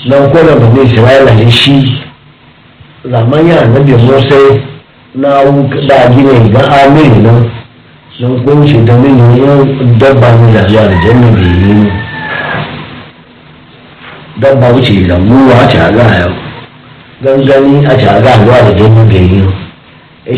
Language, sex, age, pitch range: English, male, 60-79, 120-170 Hz